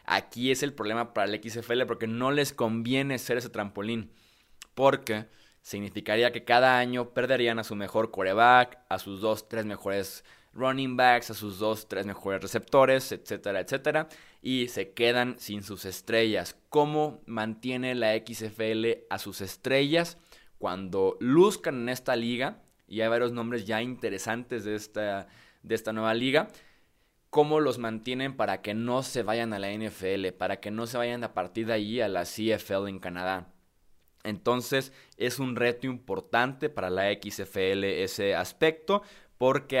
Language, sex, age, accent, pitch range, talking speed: Spanish, male, 20-39, Mexican, 105-130 Hz, 155 wpm